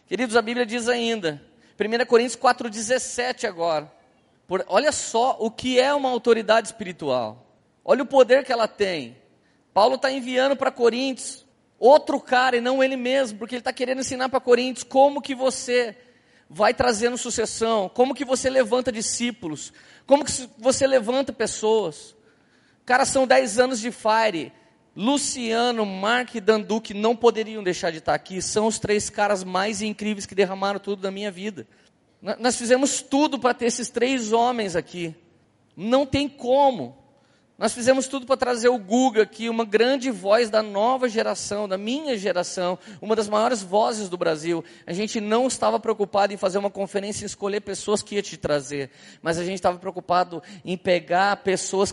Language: Portuguese